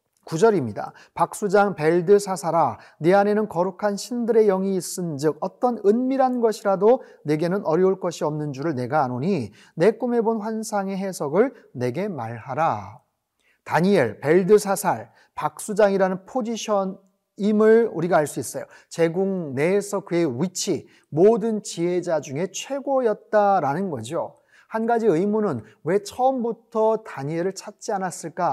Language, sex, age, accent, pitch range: Korean, male, 30-49, native, 165-215 Hz